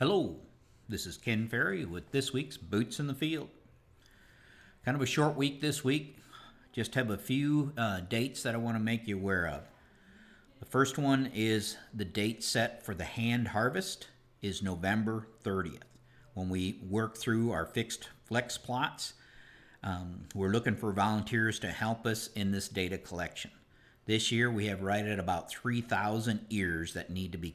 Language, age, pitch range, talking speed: English, 50-69, 100-125 Hz, 175 wpm